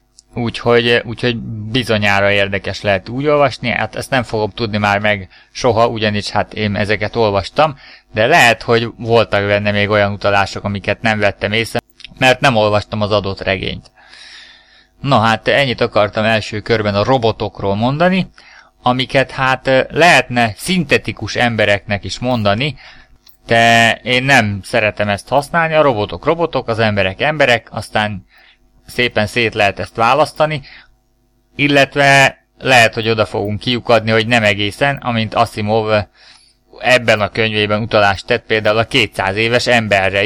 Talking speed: 135 wpm